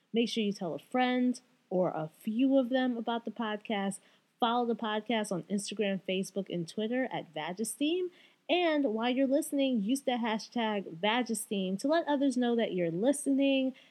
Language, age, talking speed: English, 30-49, 170 wpm